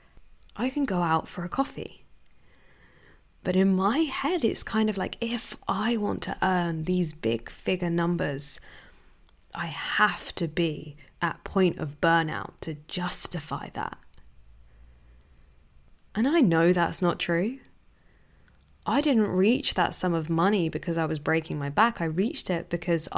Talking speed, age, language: 150 wpm, 10-29, English